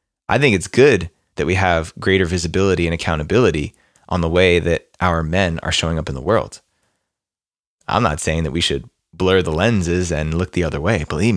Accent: American